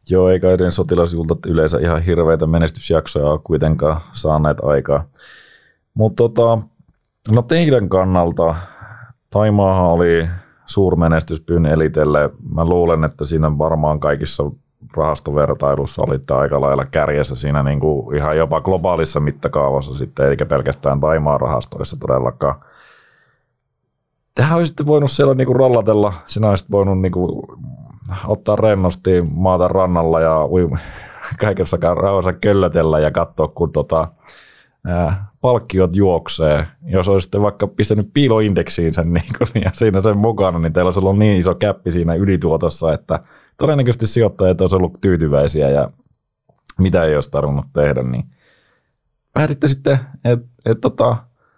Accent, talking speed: native, 120 wpm